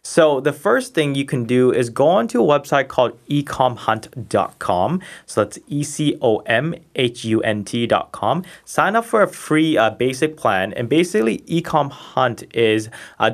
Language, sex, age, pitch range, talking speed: English, male, 20-39, 115-150 Hz, 135 wpm